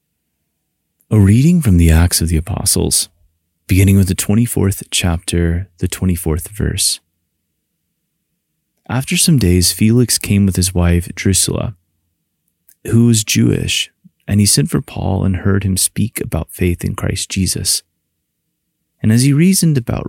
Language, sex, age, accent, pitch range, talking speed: English, male, 30-49, American, 85-110 Hz, 140 wpm